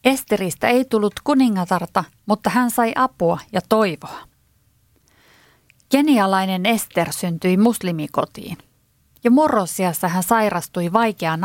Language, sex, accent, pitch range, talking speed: Finnish, female, native, 170-225 Hz, 100 wpm